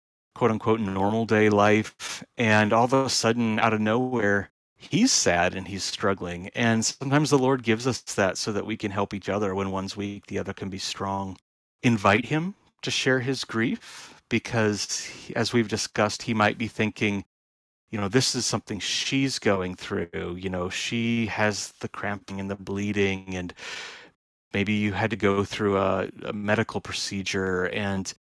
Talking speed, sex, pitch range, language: 175 wpm, male, 95-115 Hz, English